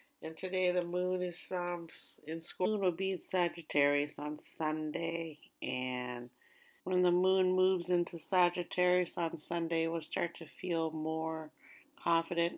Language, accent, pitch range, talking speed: English, American, 150-180 Hz, 150 wpm